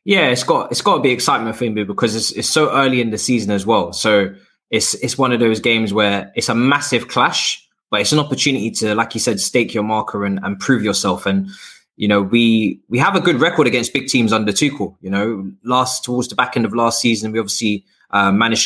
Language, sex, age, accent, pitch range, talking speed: English, male, 20-39, British, 105-125 Hz, 240 wpm